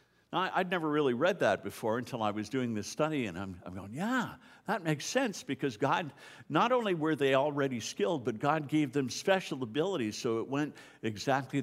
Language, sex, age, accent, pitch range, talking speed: English, male, 60-79, American, 105-150 Hz, 195 wpm